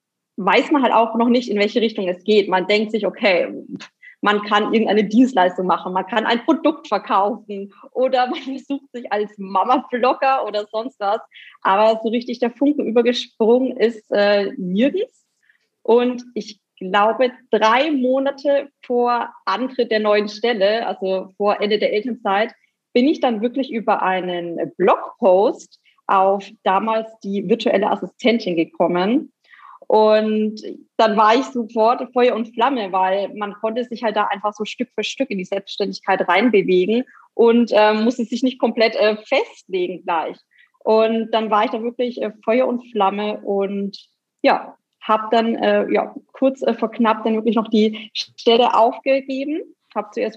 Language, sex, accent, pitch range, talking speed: German, female, German, 205-245 Hz, 155 wpm